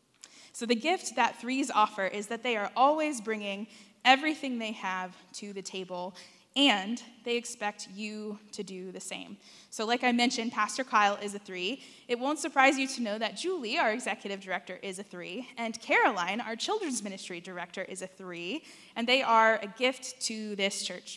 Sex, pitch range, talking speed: female, 200-245 Hz, 185 wpm